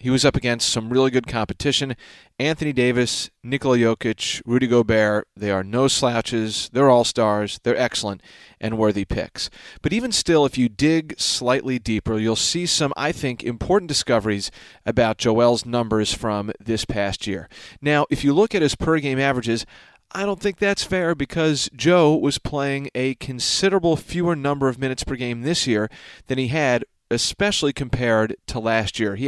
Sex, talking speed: male, 170 wpm